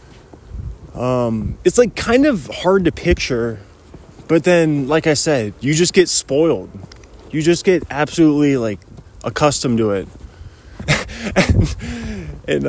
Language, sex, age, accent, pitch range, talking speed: English, male, 20-39, American, 110-170 Hz, 125 wpm